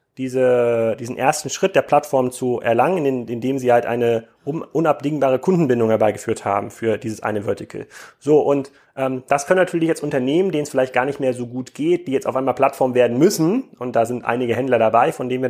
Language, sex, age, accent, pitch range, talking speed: German, male, 30-49, German, 125-165 Hz, 200 wpm